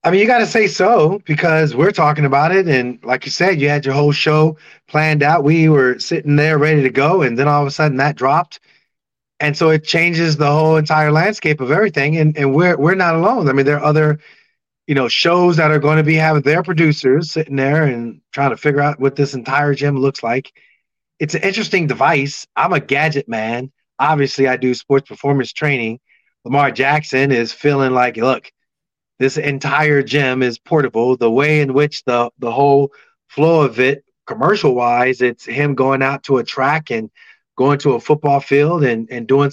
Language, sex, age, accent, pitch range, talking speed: English, male, 30-49, American, 135-155 Hz, 205 wpm